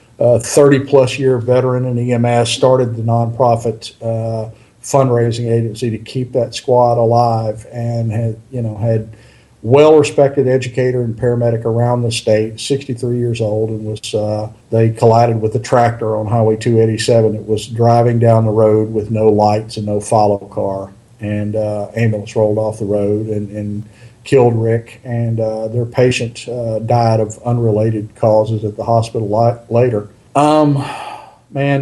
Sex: male